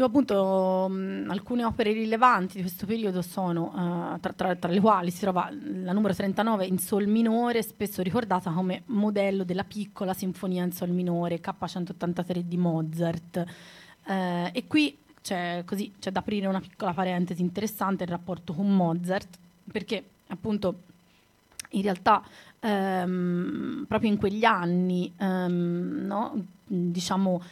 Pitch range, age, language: 180-205 Hz, 30-49, Italian